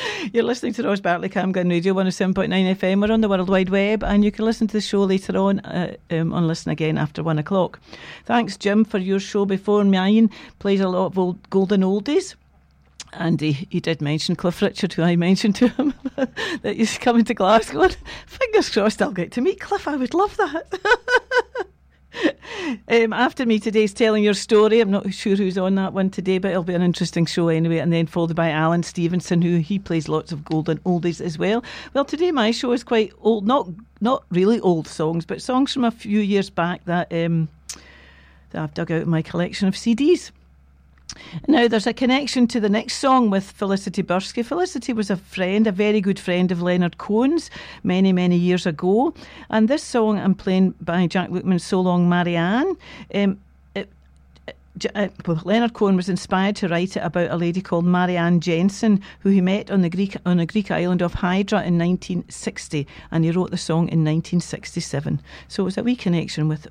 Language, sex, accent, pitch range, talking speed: English, female, British, 170-220 Hz, 200 wpm